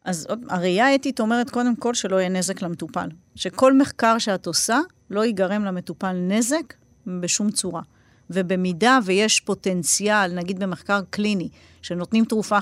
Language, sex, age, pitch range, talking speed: Hebrew, female, 40-59, 175-220 Hz, 140 wpm